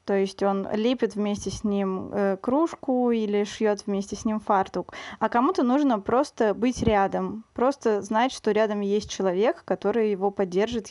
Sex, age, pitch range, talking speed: female, 20-39, 210-240 Hz, 165 wpm